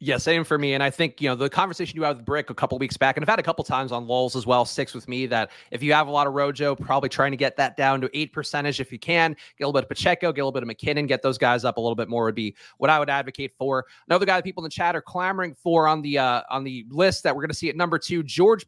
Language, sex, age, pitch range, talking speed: English, male, 30-49, 135-175 Hz, 335 wpm